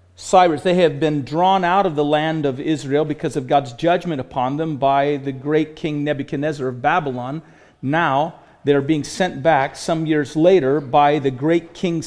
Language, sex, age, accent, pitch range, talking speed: English, male, 40-59, American, 140-175 Hz, 180 wpm